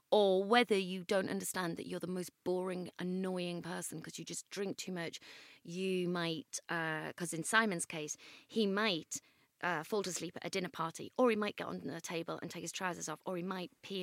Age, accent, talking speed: 30-49, British, 220 wpm